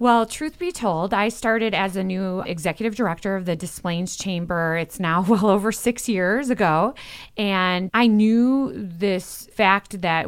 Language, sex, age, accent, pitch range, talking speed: English, female, 30-49, American, 170-225 Hz, 165 wpm